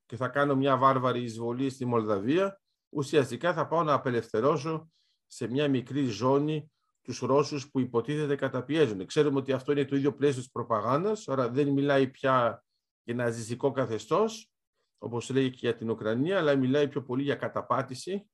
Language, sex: Greek, male